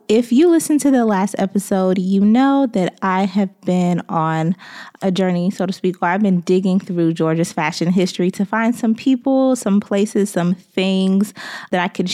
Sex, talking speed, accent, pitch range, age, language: female, 190 wpm, American, 180-225 Hz, 20-39, English